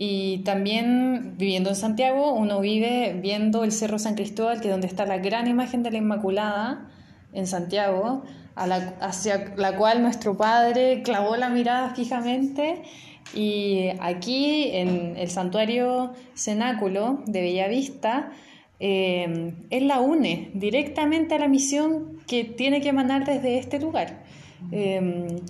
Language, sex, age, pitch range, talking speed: Spanish, female, 20-39, 200-250 Hz, 140 wpm